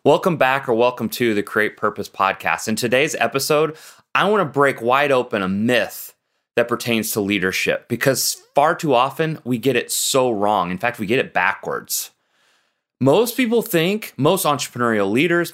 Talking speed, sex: 170 wpm, male